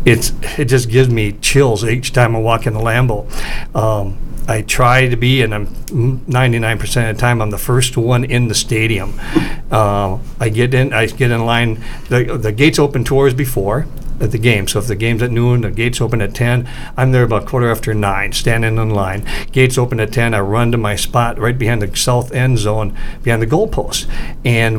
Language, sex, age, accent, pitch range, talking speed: English, male, 50-69, American, 110-135 Hz, 210 wpm